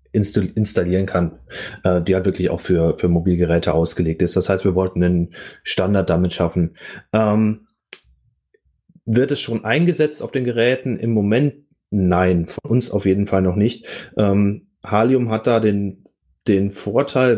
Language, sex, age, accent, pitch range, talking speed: German, male, 30-49, German, 95-110 Hz, 150 wpm